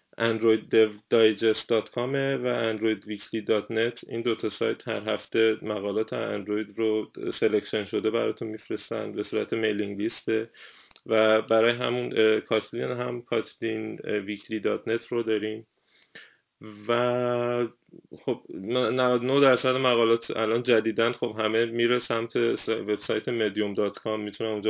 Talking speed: 105 wpm